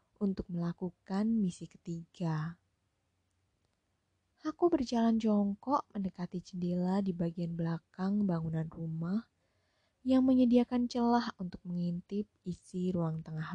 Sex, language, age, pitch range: female, Indonesian, 20-39, 160-225 Hz